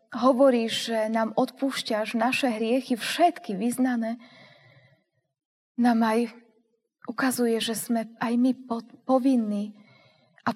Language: Slovak